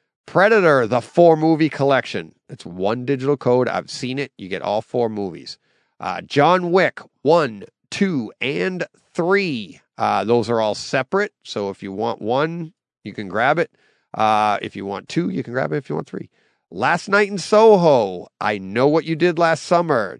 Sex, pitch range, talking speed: male, 115-165 Hz, 185 wpm